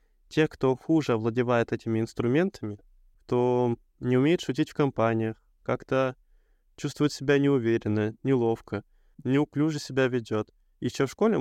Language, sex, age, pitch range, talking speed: Russian, male, 20-39, 115-135 Hz, 120 wpm